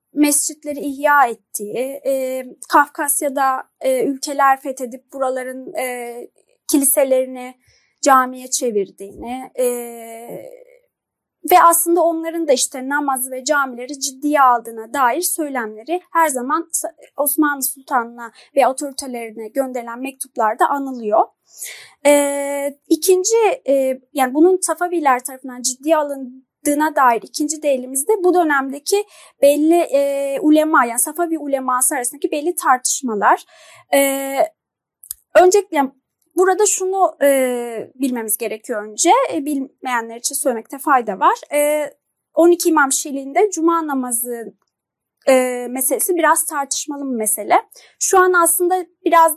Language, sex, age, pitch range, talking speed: Turkish, female, 30-49, 255-325 Hz, 110 wpm